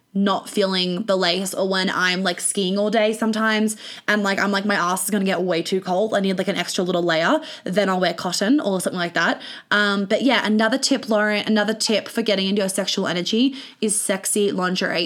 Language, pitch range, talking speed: English, 195-235 Hz, 225 wpm